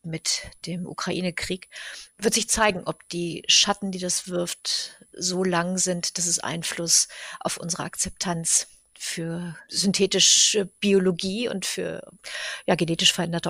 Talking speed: 125 wpm